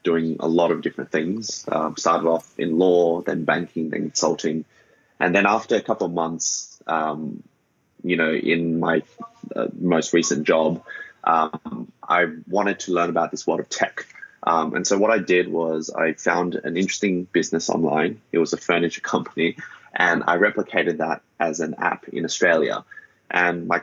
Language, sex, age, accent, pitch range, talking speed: English, male, 20-39, Australian, 80-95 Hz, 175 wpm